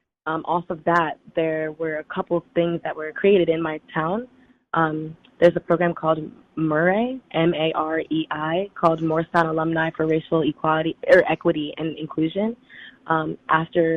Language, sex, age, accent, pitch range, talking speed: English, female, 20-39, American, 160-175 Hz, 165 wpm